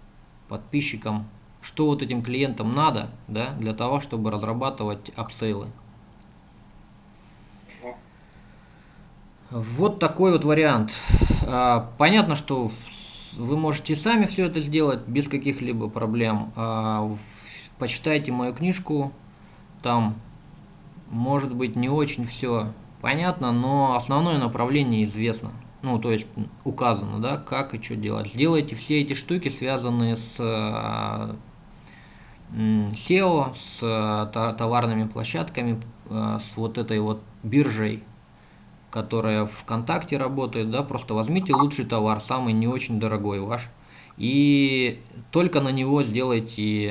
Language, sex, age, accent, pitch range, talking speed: Russian, male, 20-39, native, 110-140 Hz, 105 wpm